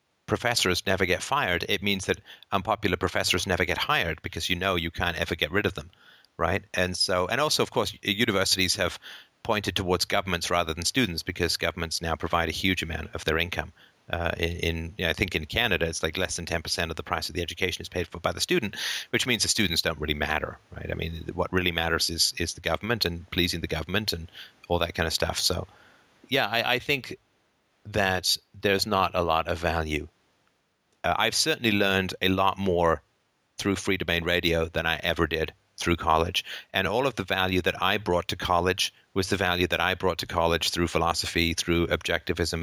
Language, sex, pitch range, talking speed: English, male, 85-95 Hz, 210 wpm